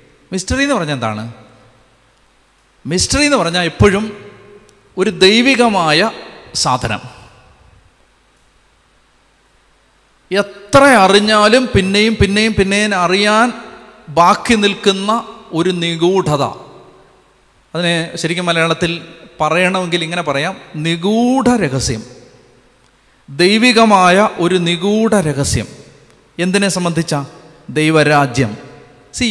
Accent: native